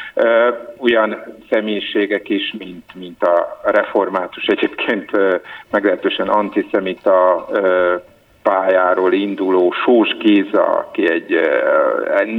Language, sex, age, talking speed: Hungarian, male, 50-69, 80 wpm